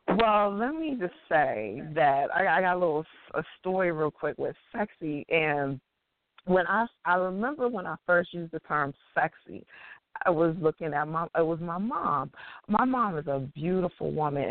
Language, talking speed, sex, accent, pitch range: English, 180 wpm, female, American, 155-205 Hz